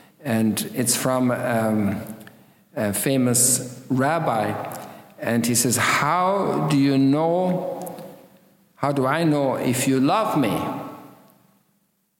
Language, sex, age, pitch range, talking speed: English, male, 50-69, 120-165 Hz, 105 wpm